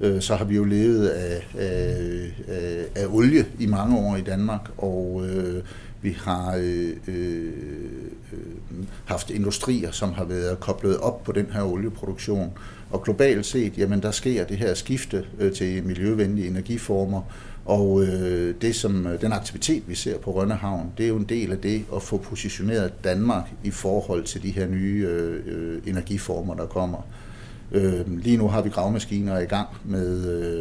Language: Danish